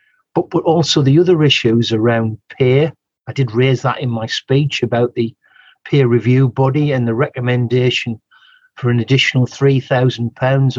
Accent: British